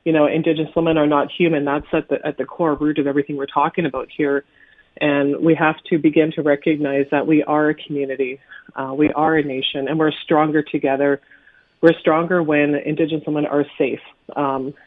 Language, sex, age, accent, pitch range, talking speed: English, female, 40-59, American, 145-165 Hz, 200 wpm